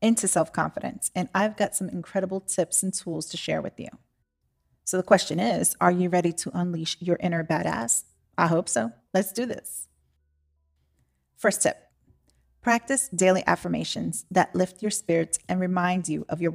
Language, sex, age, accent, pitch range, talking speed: English, female, 30-49, American, 160-210 Hz, 165 wpm